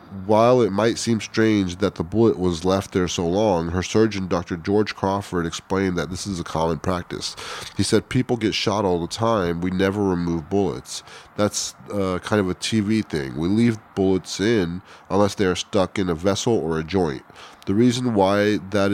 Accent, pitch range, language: American, 95-110 Hz, English